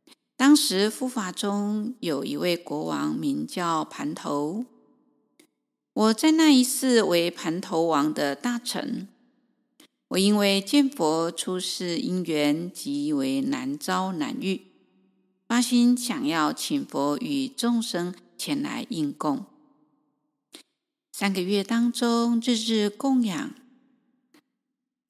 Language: Chinese